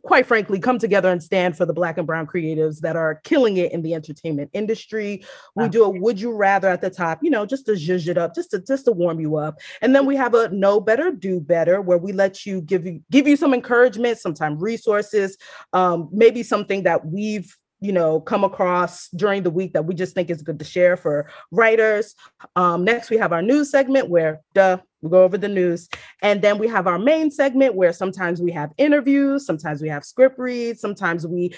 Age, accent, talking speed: 30-49, American, 225 wpm